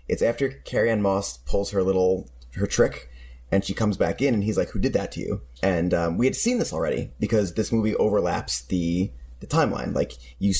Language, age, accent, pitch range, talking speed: English, 30-49, American, 90-120 Hz, 215 wpm